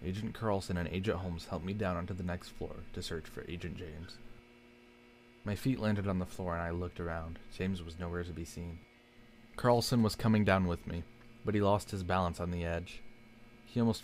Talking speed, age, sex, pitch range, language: 210 wpm, 20-39, male, 85-115 Hz, English